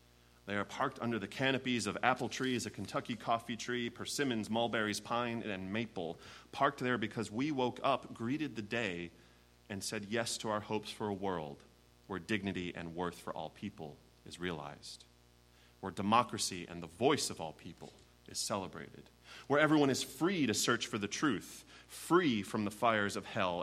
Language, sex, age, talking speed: English, male, 30-49, 180 wpm